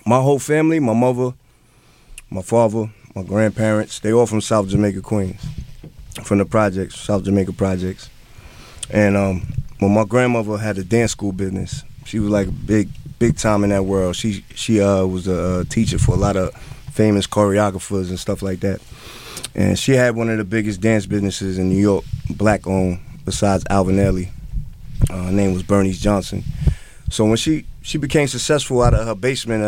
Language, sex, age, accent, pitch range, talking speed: English, male, 20-39, American, 95-120 Hz, 175 wpm